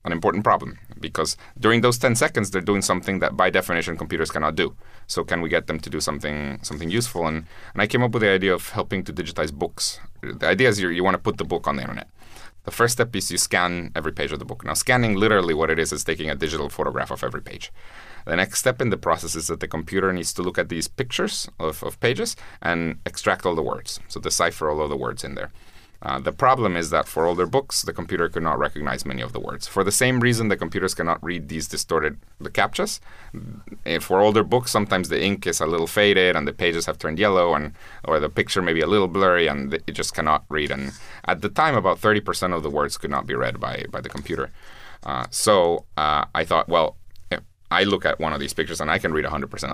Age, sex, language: 30-49, male, English